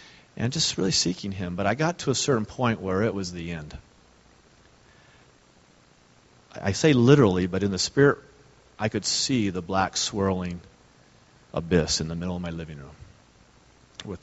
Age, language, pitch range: 40-59, English, 90-115 Hz